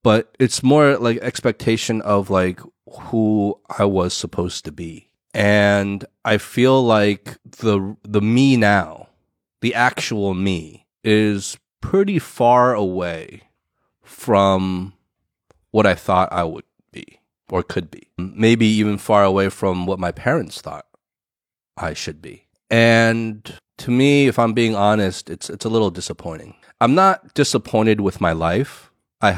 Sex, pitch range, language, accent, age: male, 95-125 Hz, Chinese, American, 30-49